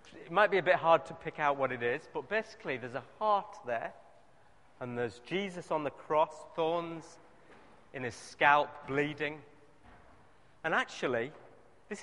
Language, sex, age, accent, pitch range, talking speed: English, male, 40-59, British, 100-165 Hz, 160 wpm